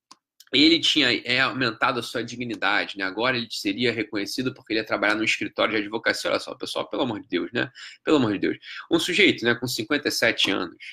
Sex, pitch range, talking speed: male, 130-205 Hz, 210 wpm